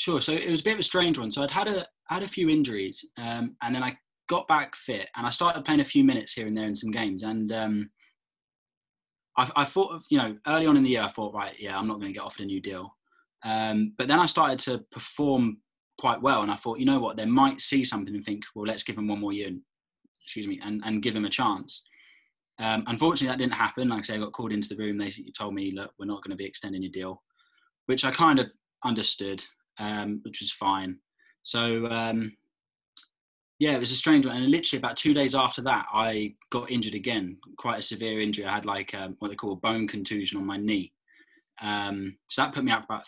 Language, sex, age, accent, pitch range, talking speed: English, male, 10-29, British, 105-135 Hz, 250 wpm